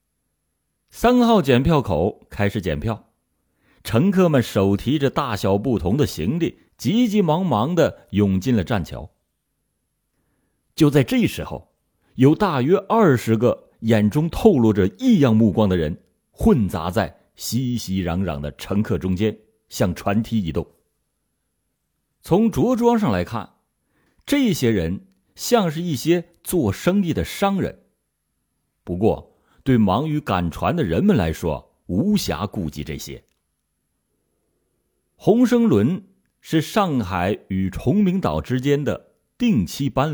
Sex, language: male, Chinese